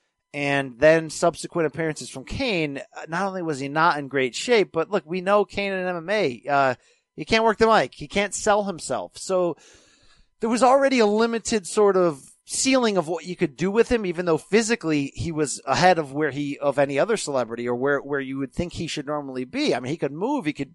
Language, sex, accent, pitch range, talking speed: English, male, American, 140-195 Hz, 225 wpm